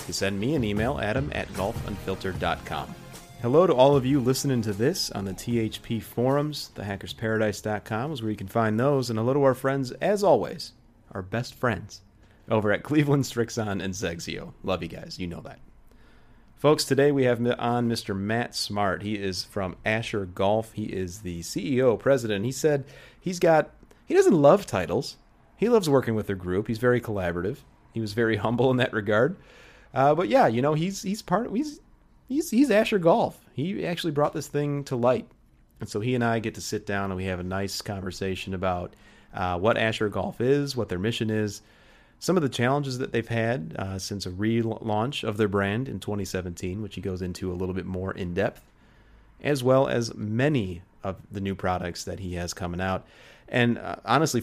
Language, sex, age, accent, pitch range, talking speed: English, male, 30-49, American, 100-130 Hz, 195 wpm